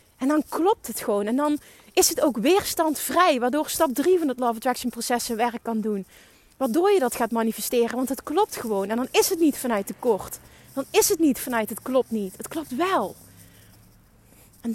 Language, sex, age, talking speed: Dutch, female, 30-49, 210 wpm